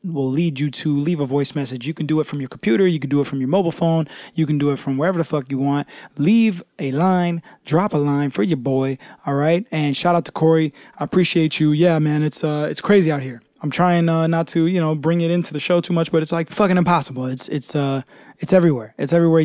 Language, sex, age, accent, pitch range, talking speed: English, male, 20-39, American, 145-165 Hz, 265 wpm